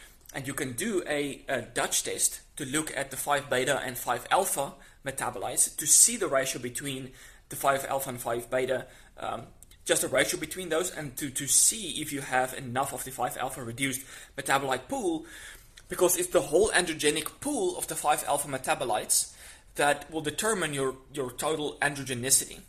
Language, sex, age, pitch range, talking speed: English, male, 20-39, 125-150 Hz, 165 wpm